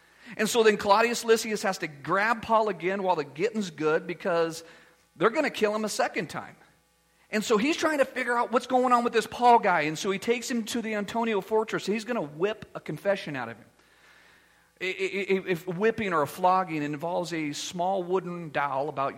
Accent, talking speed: American, 205 wpm